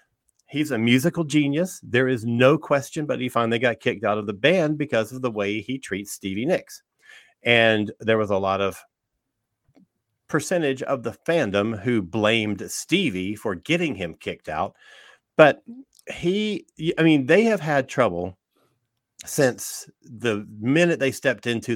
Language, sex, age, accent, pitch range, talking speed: English, male, 40-59, American, 105-145 Hz, 155 wpm